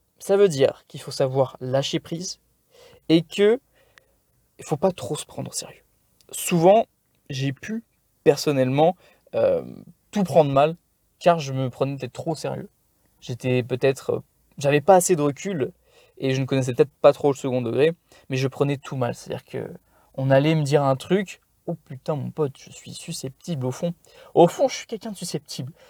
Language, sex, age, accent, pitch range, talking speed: French, male, 20-39, French, 135-180 Hz, 190 wpm